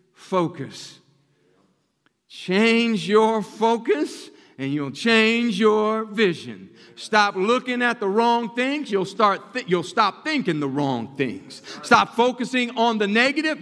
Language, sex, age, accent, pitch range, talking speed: English, male, 50-69, American, 145-220 Hz, 130 wpm